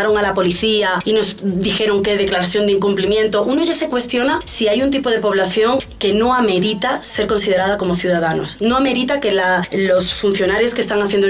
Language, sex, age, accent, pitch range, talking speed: Spanish, female, 20-39, Spanish, 180-225 Hz, 190 wpm